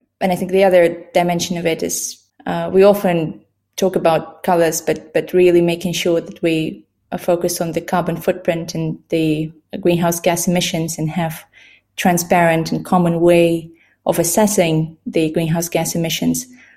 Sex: female